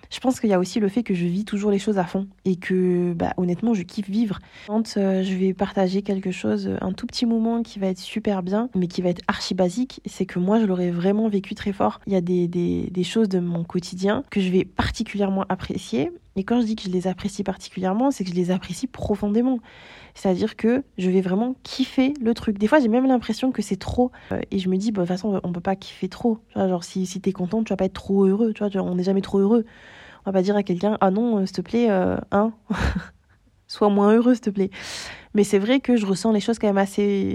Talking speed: 260 wpm